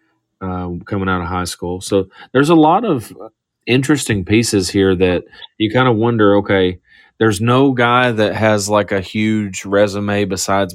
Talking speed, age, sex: 165 wpm, 30-49, male